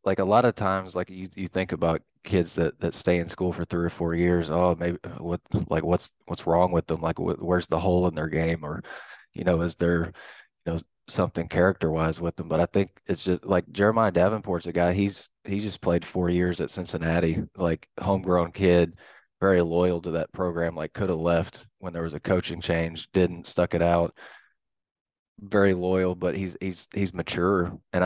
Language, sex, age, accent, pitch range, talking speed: English, male, 20-39, American, 85-95 Hz, 205 wpm